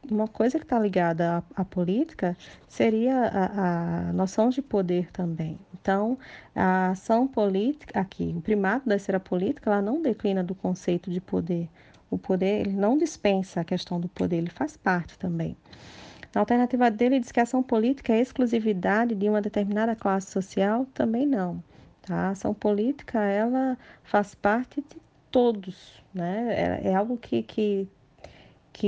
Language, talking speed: Portuguese, 160 wpm